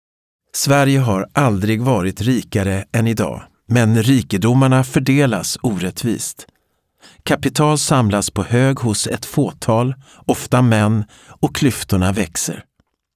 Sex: male